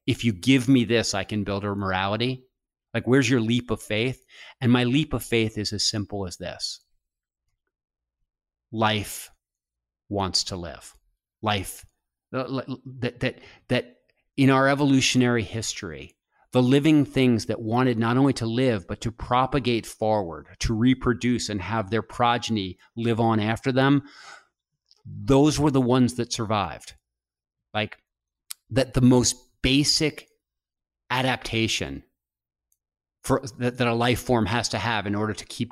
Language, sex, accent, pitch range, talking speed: English, male, American, 95-125 Hz, 145 wpm